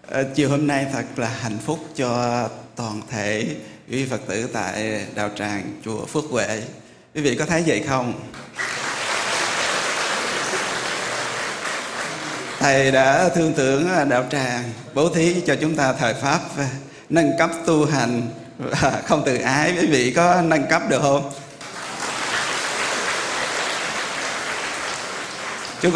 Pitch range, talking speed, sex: 120-155 Hz, 130 wpm, male